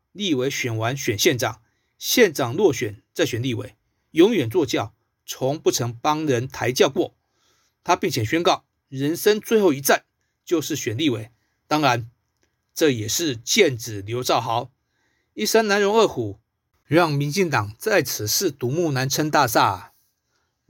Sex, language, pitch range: male, Chinese, 115-170 Hz